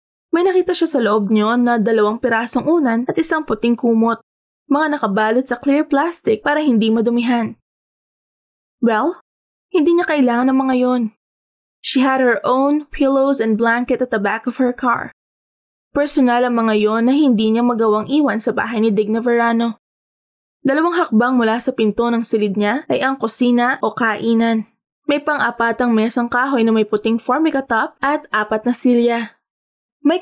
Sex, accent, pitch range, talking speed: female, native, 225-265 Hz, 165 wpm